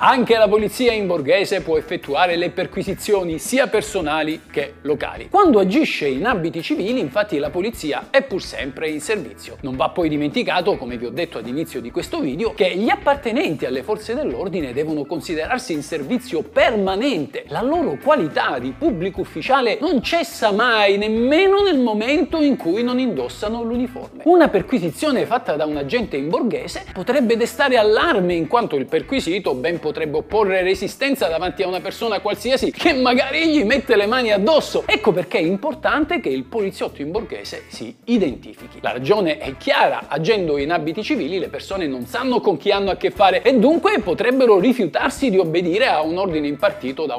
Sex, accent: male, native